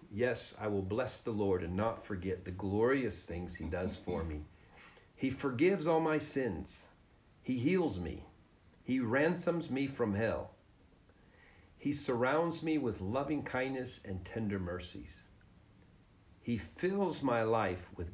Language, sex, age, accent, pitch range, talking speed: English, male, 50-69, American, 95-120 Hz, 140 wpm